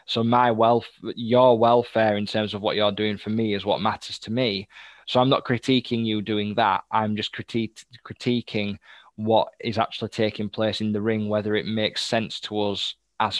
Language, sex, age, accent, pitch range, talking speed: English, male, 10-29, British, 105-120 Hz, 195 wpm